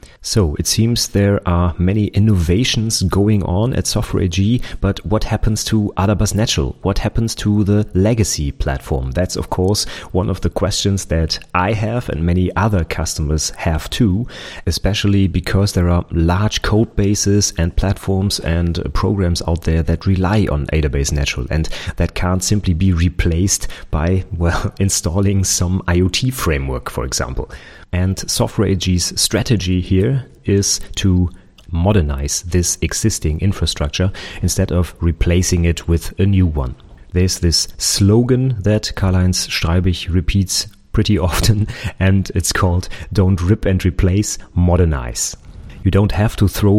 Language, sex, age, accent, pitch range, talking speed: English, male, 30-49, German, 85-105 Hz, 145 wpm